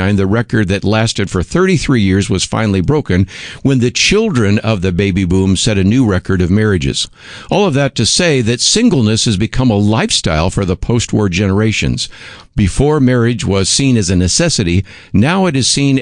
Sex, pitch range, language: male, 95-125 Hz, English